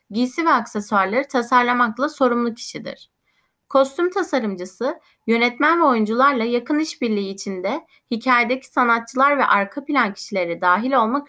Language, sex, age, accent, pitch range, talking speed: Turkish, female, 30-49, native, 220-285 Hz, 115 wpm